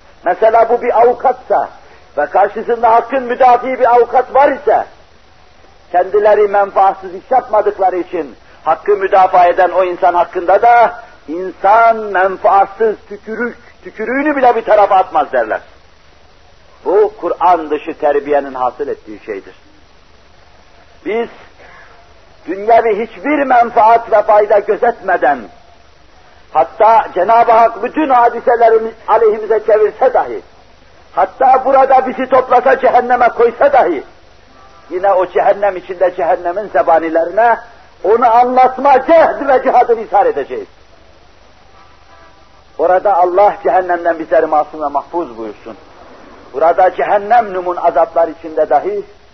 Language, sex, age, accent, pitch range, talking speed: Turkish, male, 60-79, native, 165-245 Hz, 110 wpm